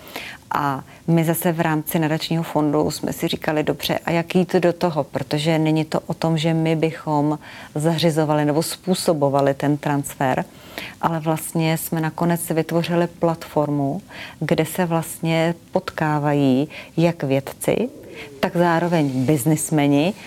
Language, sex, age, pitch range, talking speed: Czech, female, 30-49, 150-170 Hz, 130 wpm